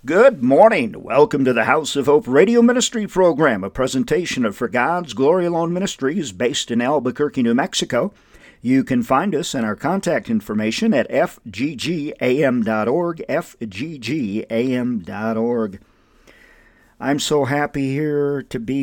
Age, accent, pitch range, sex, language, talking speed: 50-69, American, 110-135 Hz, male, English, 130 wpm